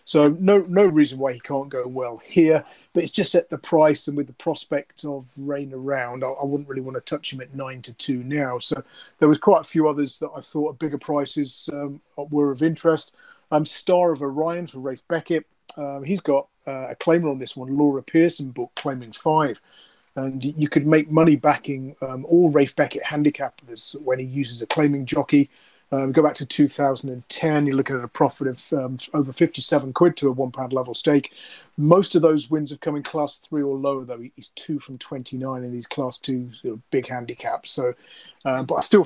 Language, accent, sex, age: English, British, male, 30-49